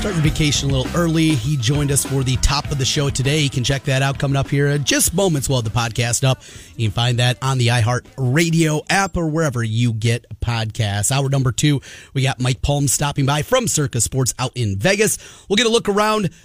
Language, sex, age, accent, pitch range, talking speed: English, male, 30-49, American, 120-165 Hz, 235 wpm